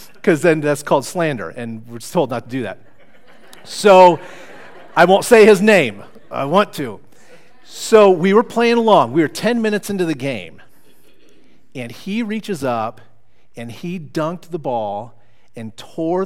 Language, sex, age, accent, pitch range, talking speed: English, male, 40-59, American, 125-180 Hz, 160 wpm